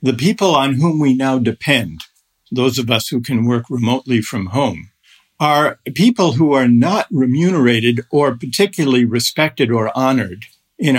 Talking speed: 155 wpm